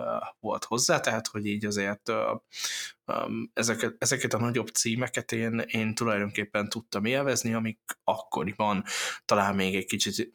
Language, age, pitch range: Hungarian, 20-39, 105-125 Hz